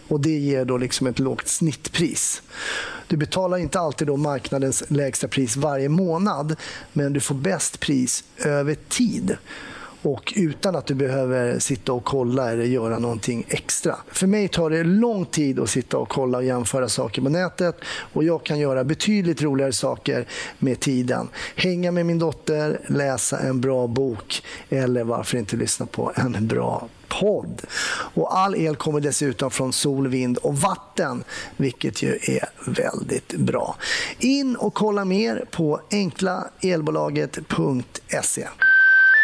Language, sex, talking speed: Swedish, male, 150 wpm